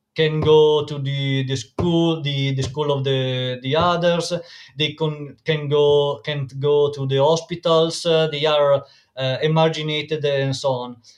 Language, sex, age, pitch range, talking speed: English, male, 20-39, 140-165 Hz, 160 wpm